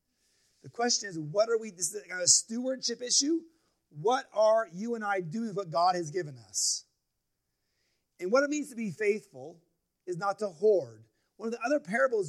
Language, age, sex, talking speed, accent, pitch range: English, 30-49, male, 200 wpm, American, 180-255 Hz